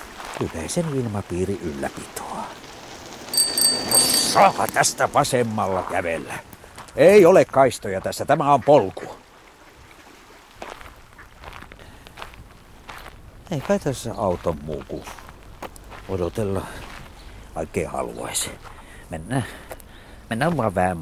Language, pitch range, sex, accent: Finnish, 90-110 Hz, male, native